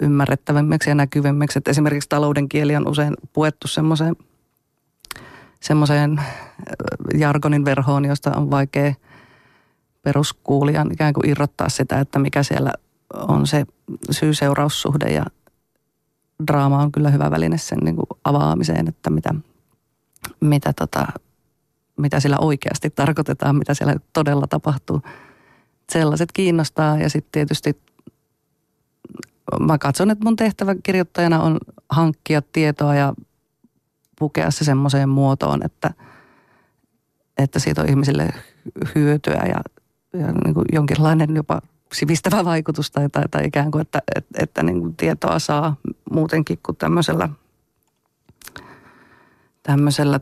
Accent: native